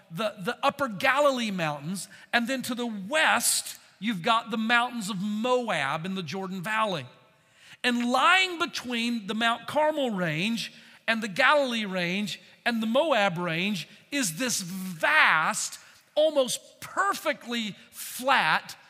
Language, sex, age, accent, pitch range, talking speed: English, male, 50-69, American, 200-275 Hz, 130 wpm